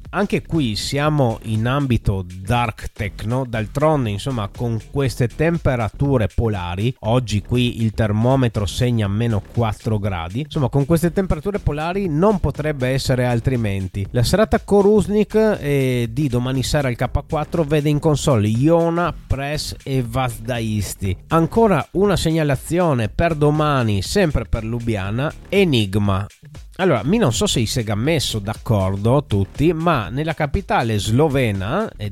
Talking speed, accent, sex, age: 130 wpm, native, male, 30-49